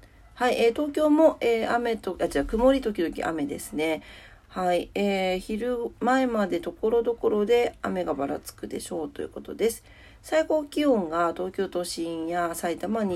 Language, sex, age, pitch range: Japanese, female, 40-59, 165-235 Hz